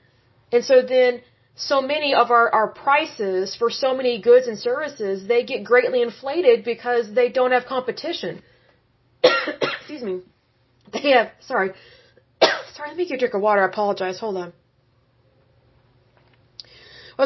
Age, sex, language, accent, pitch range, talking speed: 30-49, female, English, American, 195-285 Hz, 145 wpm